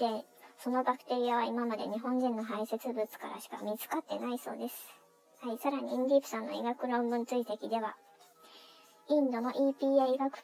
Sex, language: male, Japanese